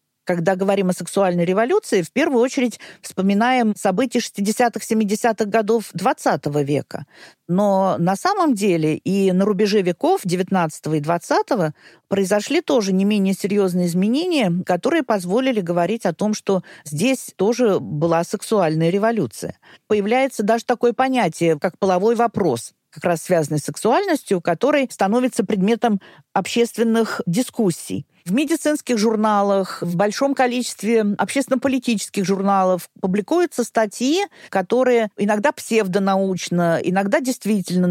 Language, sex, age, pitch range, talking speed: Russian, female, 50-69, 180-240 Hz, 115 wpm